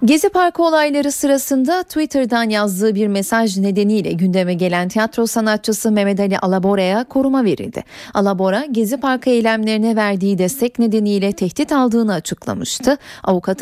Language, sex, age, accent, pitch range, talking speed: Turkish, female, 40-59, native, 195-260 Hz, 130 wpm